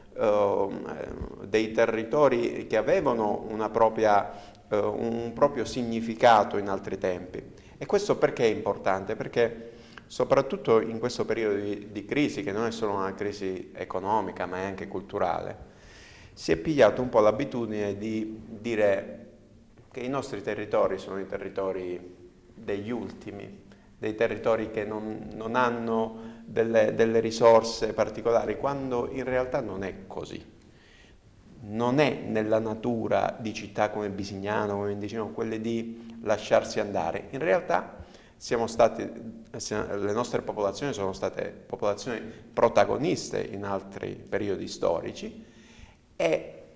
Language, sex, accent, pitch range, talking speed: Italian, male, native, 105-115 Hz, 130 wpm